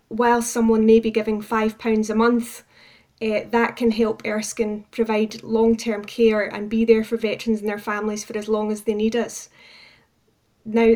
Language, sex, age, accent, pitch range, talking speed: English, female, 10-29, British, 215-230 Hz, 180 wpm